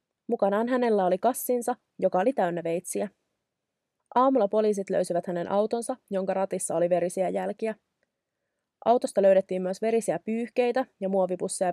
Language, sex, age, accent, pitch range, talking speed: Finnish, female, 30-49, native, 185-230 Hz, 130 wpm